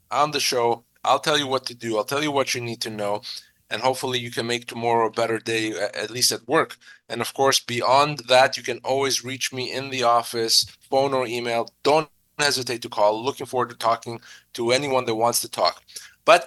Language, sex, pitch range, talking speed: English, male, 115-145 Hz, 220 wpm